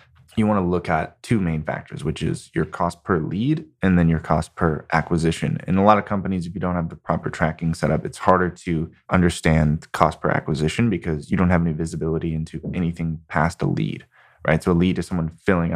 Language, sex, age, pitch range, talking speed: English, male, 20-39, 80-90 Hz, 225 wpm